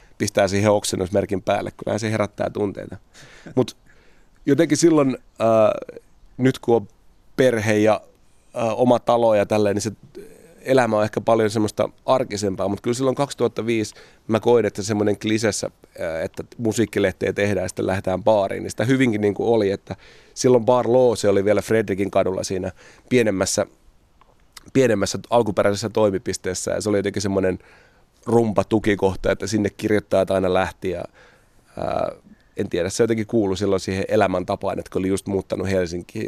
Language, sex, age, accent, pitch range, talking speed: Finnish, male, 30-49, native, 100-115 Hz, 155 wpm